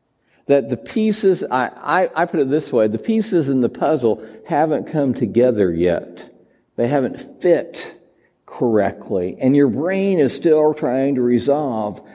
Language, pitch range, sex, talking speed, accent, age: English, 120-170 Hz, male, 155 wpm, American, 60-79